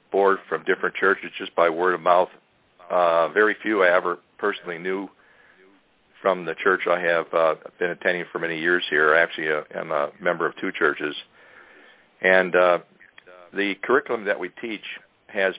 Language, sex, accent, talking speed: English, male, American, 175 wpm